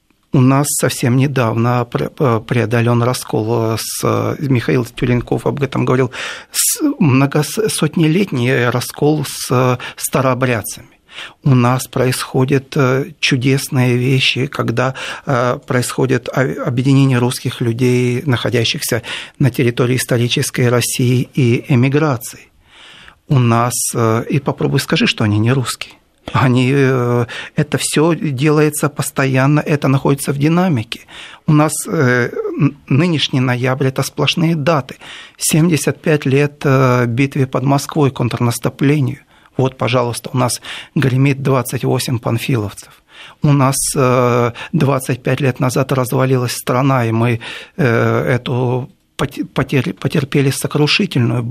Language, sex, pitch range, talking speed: Russian, male, 125-150 Hz, 95 wpm